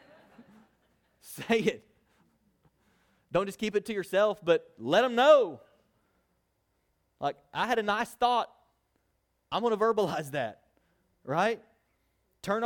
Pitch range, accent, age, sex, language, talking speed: 155-200 Hz, American, 30-49, male, English, 120 wpm